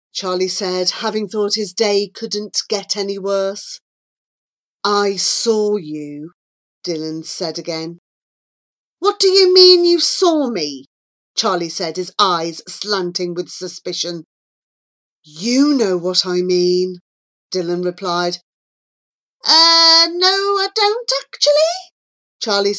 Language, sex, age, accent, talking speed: English, female, 40-59, British, 115 wpm